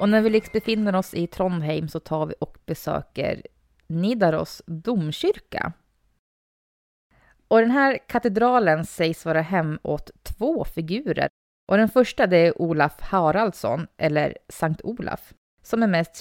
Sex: female